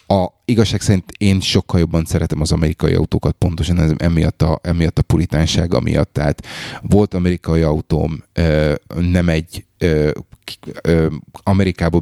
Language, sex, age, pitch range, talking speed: Hungarian, male, 30-49, 80-100 Hz, 120 wpm